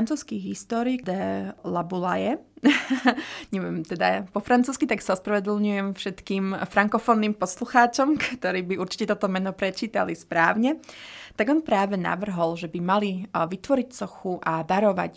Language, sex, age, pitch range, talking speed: Slovak, female, 20-39, 175-215 Hz, 120 wpm